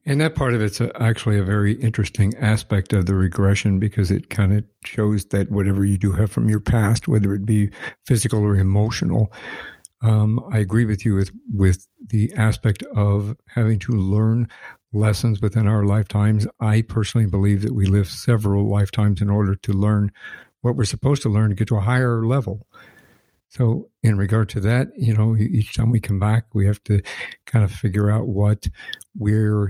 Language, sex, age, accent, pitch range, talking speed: English, male, 60-79, American, 100-115 Hz, 190 wpm